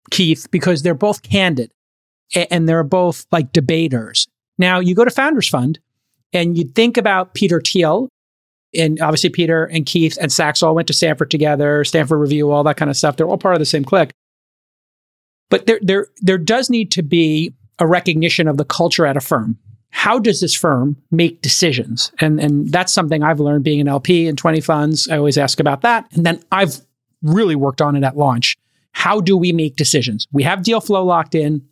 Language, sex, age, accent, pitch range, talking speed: English, male, 40-59, American, 145-180 Hz, 200 wpm